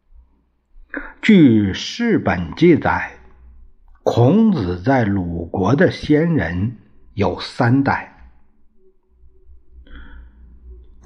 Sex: male